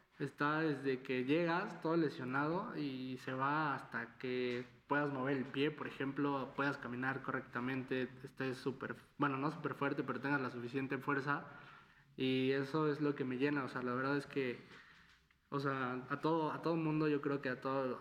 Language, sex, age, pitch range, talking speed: Spanish, male, 20-39, 130-145 Hz, 180 wpm